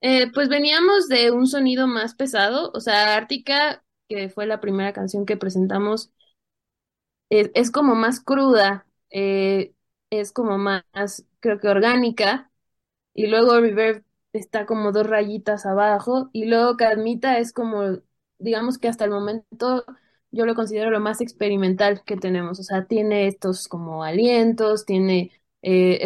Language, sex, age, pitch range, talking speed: Spanish, female, 20-39, 195-235 Hz, 150 wpm